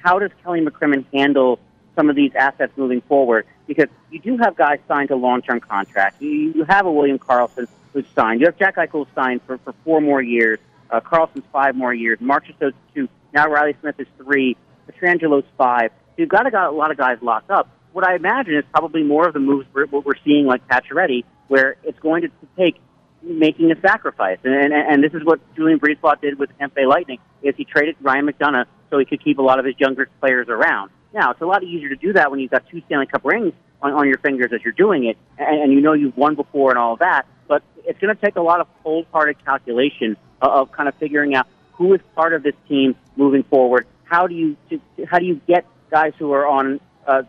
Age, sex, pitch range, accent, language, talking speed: 40-59, male, 135-165 Hz, American, English, 230 wpm